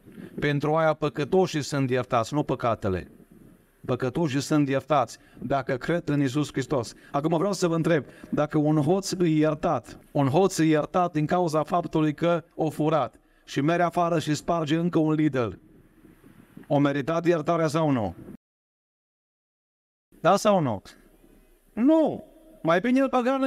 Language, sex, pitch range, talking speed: Romanian, male, 145-190 Hz, 145 wpm